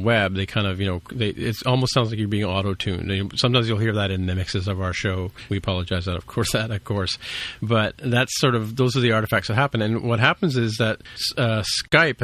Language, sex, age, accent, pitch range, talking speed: English, male, 40-59, American, 105-120 Hz, 240 wpm